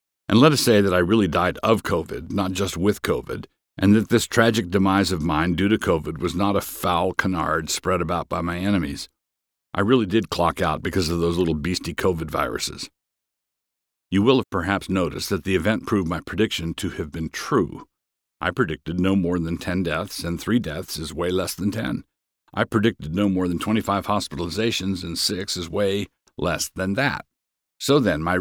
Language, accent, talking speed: English, American, 200 wpm